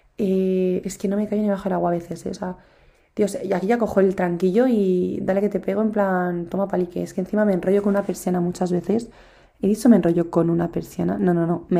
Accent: Spanish